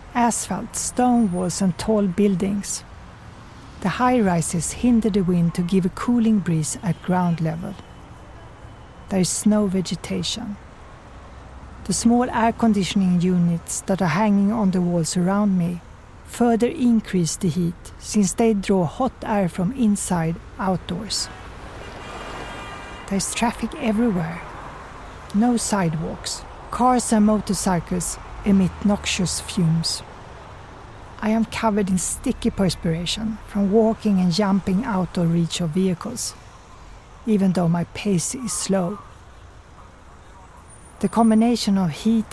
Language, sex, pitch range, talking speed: English, female, 170-215 Hz, 120 wpm